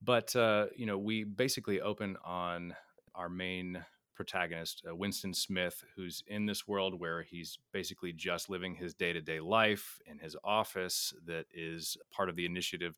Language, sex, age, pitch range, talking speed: English, male, 30-49, 85-100 Hz, 160 wpm